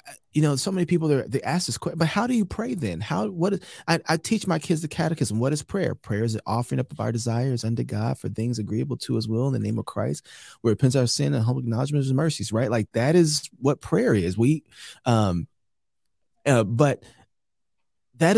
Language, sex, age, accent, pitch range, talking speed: English, male, 30-49, American, 125-175 Hz, 240 wpm